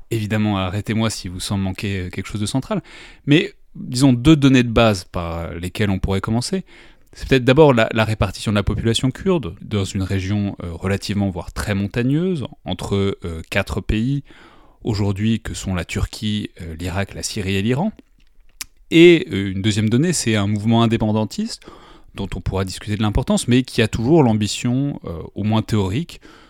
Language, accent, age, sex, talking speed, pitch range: French, French, 30-49, male, 165 wpm, 100-125 Hz